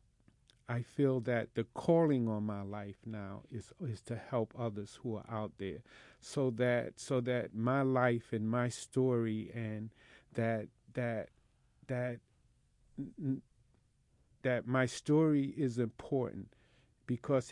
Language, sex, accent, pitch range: English, male, American, 110-125 Hz